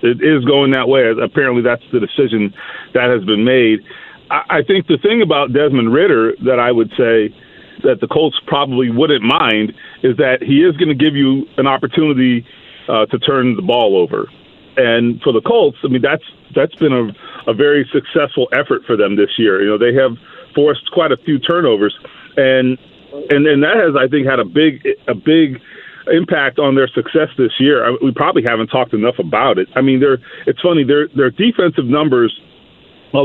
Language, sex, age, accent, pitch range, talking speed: English, male, 40-59, American, 130-175 Hz, 190 wpm